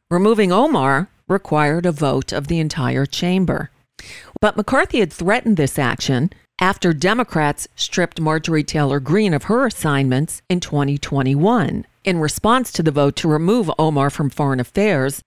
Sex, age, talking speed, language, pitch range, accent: female, 50-69, 145 wpm, English, 145-195 Hz, American